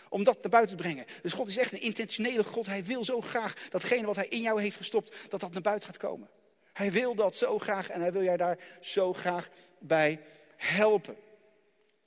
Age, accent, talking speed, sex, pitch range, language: 40-59, Dutch, 220 wpm, male, 175-230 Hz, Dutch